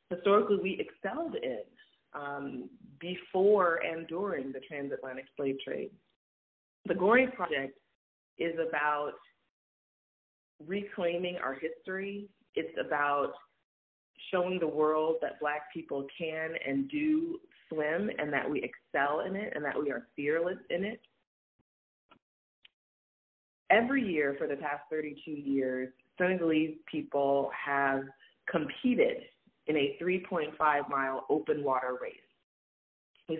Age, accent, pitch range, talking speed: 30-49, American, 135-185 Hz, 115 wpm